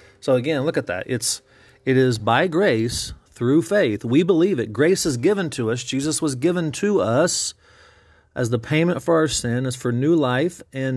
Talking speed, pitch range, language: 195 wpm, 120-165 Hz, English